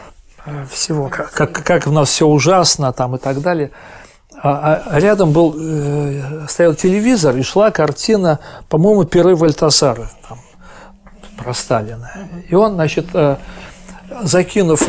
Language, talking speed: Russian, 120 wpm